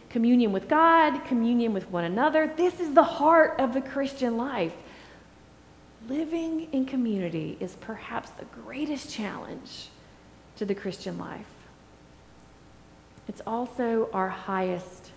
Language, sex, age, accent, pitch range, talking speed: English, female, 30-49, American, 160-255 Hz, 125 wpm